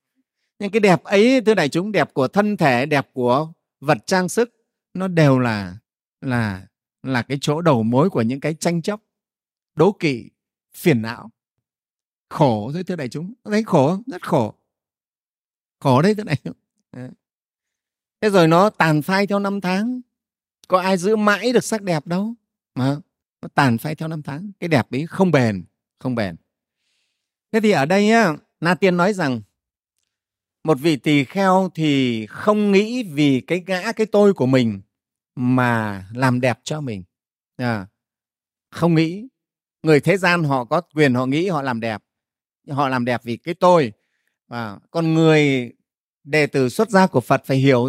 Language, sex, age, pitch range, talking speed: Vietnamese, male, 30-49, 125-190 Hz, 170 wpm